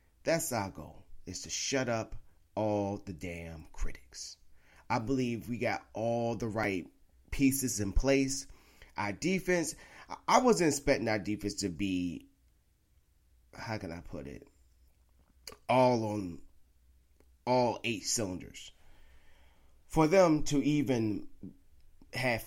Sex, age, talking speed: male, 30-49, 120 wpm